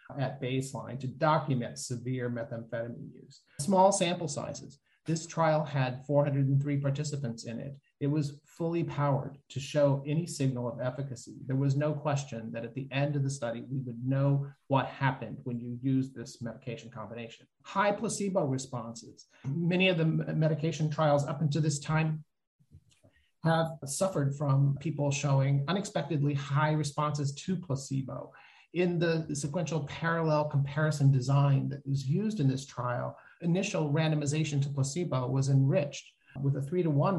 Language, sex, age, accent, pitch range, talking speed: English, male, 30-49, American, 135-160 Hz, 150 wpm